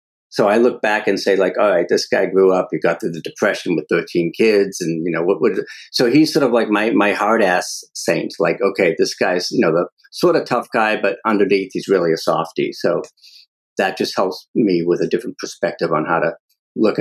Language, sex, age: English, male, 50-69